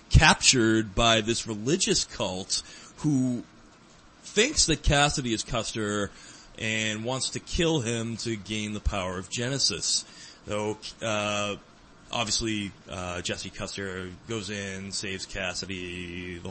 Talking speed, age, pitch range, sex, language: 120 wpm, 30-49, 100-130 Hz, male, English